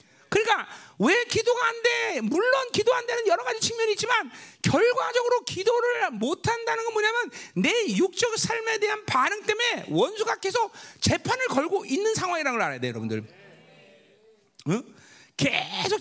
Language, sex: Korean, male